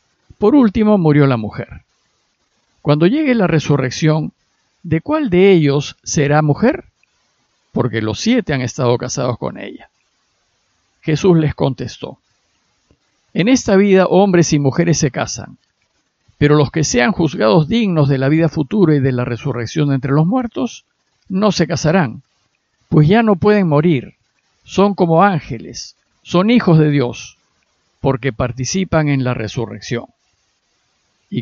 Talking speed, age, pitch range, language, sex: 140 wpm, 50-69, 125-175 Hz, Spanish, male